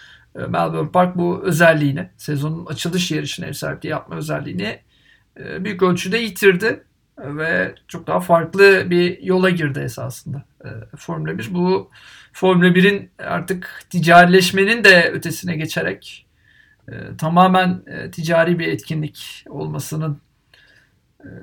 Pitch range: 155-185 Hz